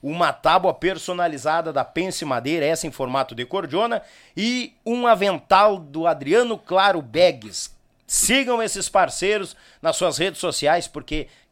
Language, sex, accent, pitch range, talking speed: Portuguese, male, Brazilian, 145-200 Hz, 135 wpm